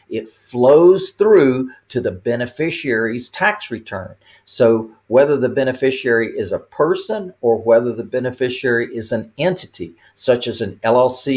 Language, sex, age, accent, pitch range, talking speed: English, male, 50-69, American, 110-135 Hz, 135 wpm